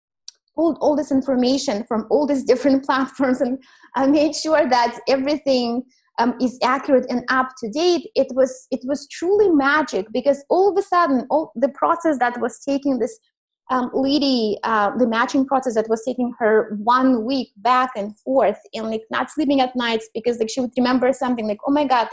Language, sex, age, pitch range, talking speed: English, female, 20-39, 240-300 Hz, 195 wpm